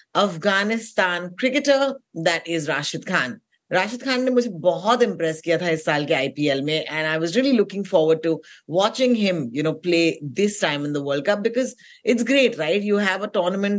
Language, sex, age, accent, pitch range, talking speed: Hindi, female, 30-49, native, 170-240 Hz, 195 wpm